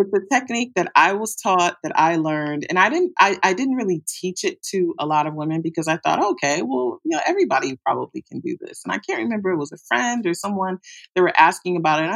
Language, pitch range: English, 150-200 Hz